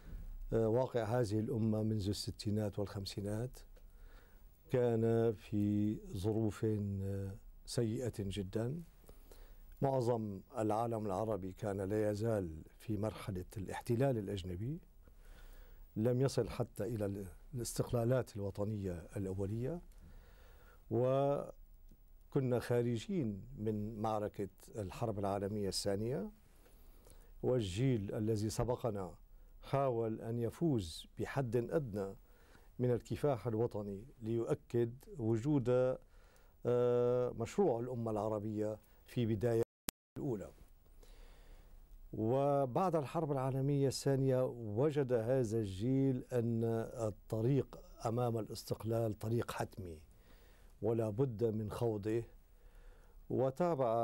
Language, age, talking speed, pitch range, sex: Arabic, 50-69, 80 wpm, 100-125 Hz, male